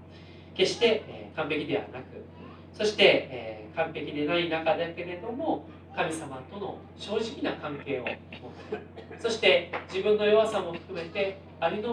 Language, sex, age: Japanese, male, 40-59